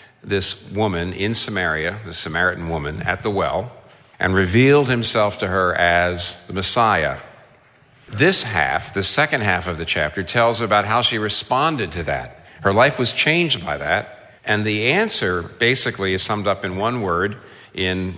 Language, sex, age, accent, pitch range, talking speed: English, male, 50-69, American, 90-115 Hz, 165 wpm